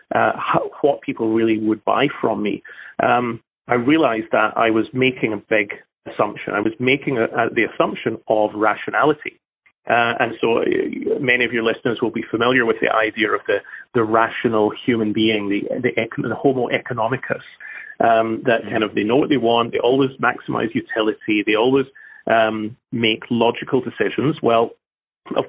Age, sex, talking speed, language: 30-49, male, 165 wpm, English